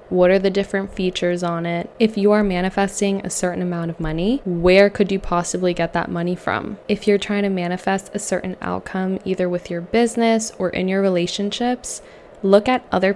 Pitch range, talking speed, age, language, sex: 180-205 Hz, 195 wpm, 10-29, English, female